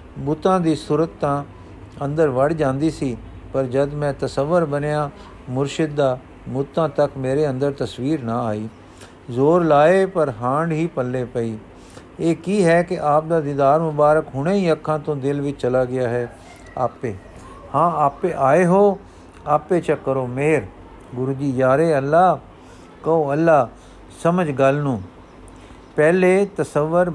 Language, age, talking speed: Punjabi, 50-69, 140 wpm